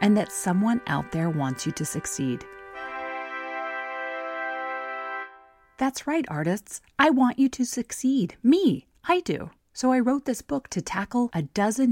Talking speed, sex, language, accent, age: 145 wpm, female, English, American, 30-49